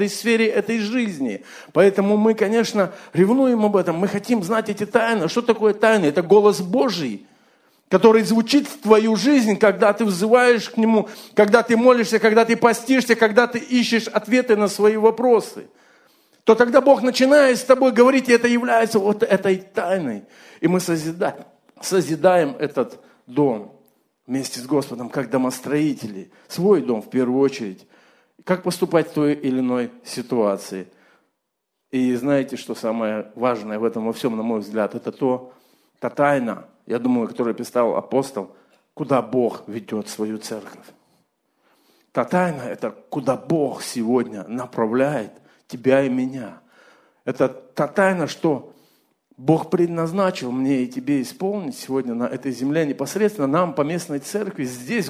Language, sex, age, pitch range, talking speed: Russian, male, 50-69, 135-225 Hz, 145 wpm